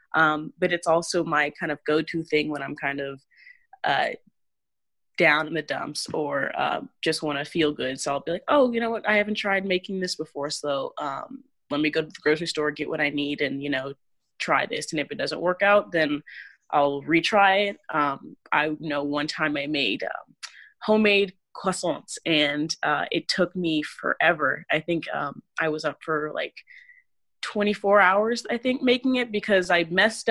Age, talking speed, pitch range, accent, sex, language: 20-39, 195 wpm, 150-205 Hz, American, female, English